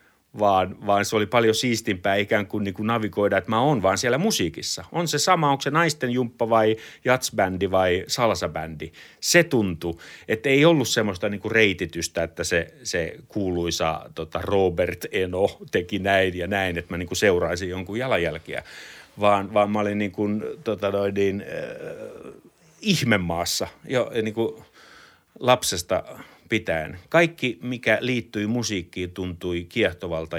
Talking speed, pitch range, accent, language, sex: 140 wpm, 90-125 Hz, native, Finnish, male